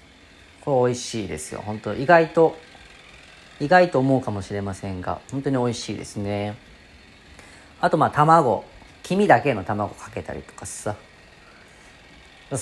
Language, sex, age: Japanese, female, 40-59